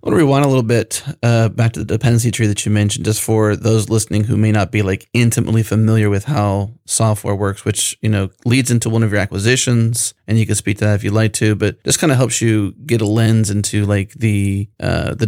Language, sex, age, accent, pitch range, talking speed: English, male, 30-49, American, 105-115 Hz, 250 wpm